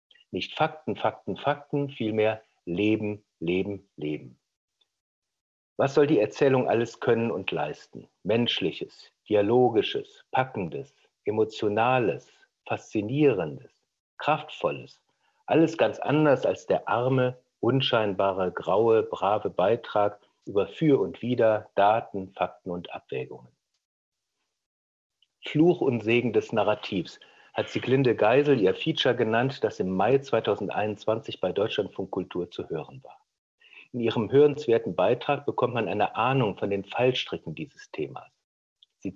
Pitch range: 105-150 Hz